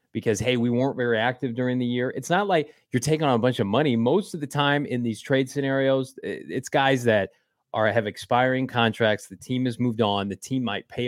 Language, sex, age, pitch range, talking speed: English, male, 30-49, 115-135 Hz, 235 wpm